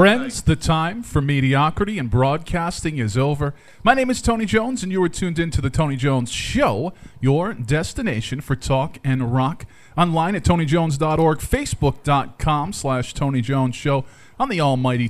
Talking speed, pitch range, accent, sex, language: 165 wpm, 120-150 Hz, American, male, English